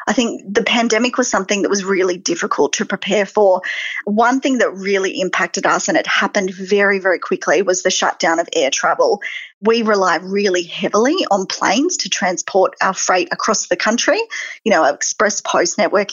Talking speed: 180 wpm